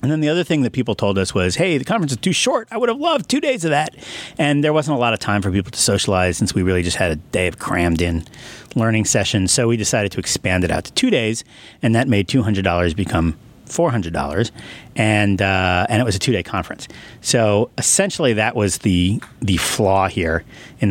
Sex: male